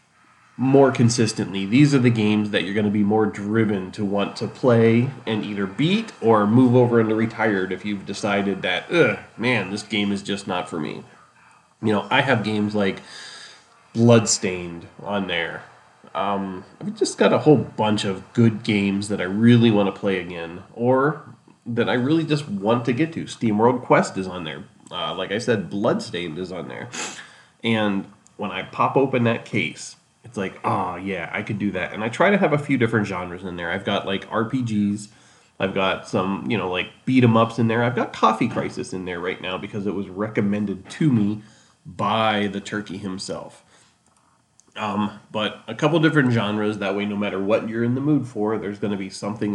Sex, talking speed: male, 200 wpm